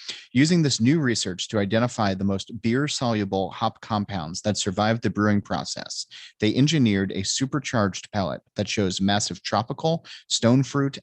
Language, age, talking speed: English, 30-49, 145 wpm